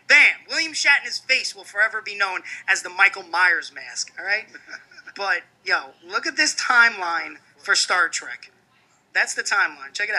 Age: 30-49